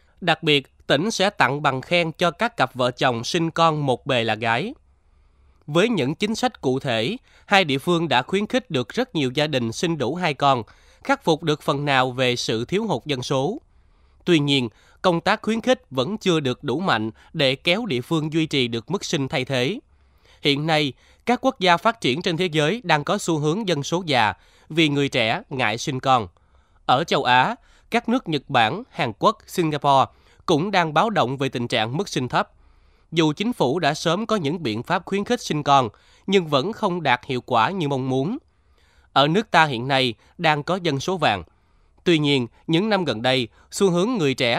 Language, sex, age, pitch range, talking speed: Vietnamese, male, 20-39, 125-180 Hz, 210 wpm